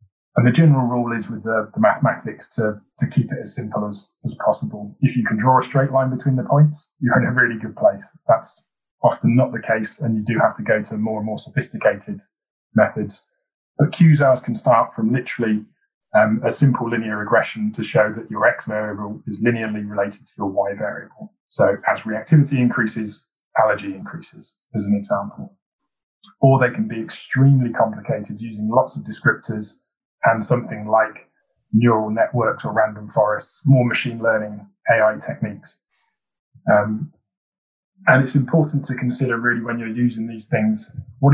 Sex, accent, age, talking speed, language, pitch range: male, British, 20-39, 175 wpm, English, 110-135 Hz